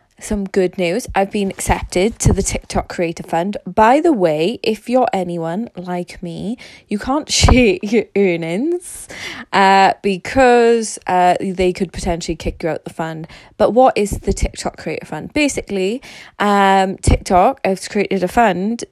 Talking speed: 155 wpm